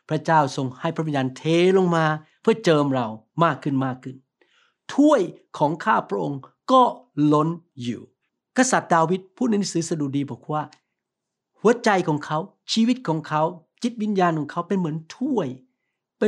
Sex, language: male, Thai